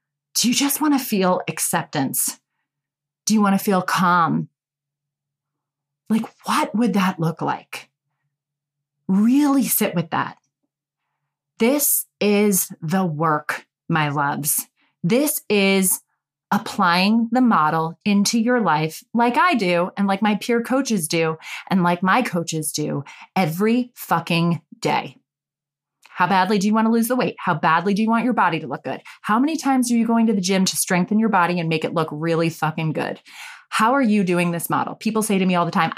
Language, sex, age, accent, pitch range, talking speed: English, female, 30-49, American, 165-240 Hz, 175 wpm